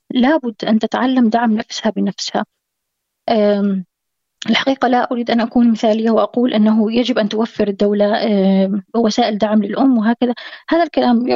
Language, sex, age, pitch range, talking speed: Arabic, female, 20-39, 210-255 Hz, 125 wpm